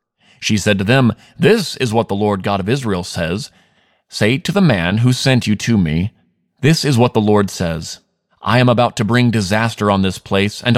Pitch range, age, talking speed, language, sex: 100-130 Hz, 30-49, 210 wpm, English, male